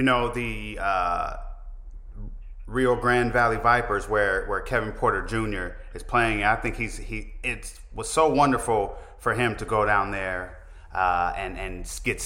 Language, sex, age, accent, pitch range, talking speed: English, male, 30-49, American, 100-120 Hz, 160 wpm